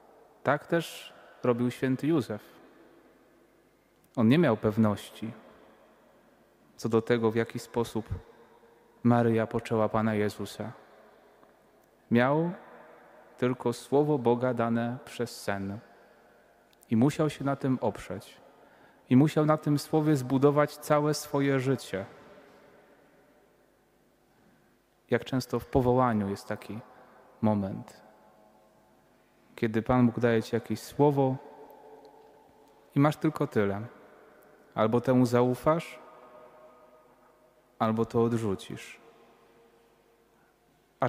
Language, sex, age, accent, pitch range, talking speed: Polish, male, 30-49, native, 110-130 Hz, 95 wpm